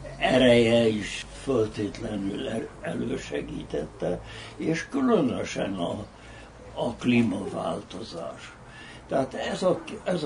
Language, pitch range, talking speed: Hungarian, 110-140 Hz, 75 wpm